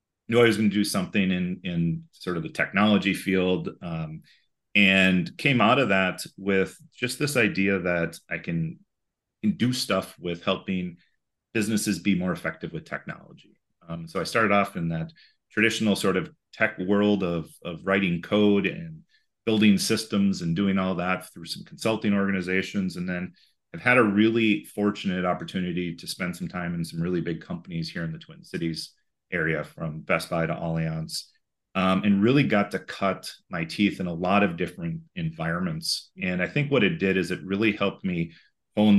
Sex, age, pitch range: male, 30-49, 90-120 Hz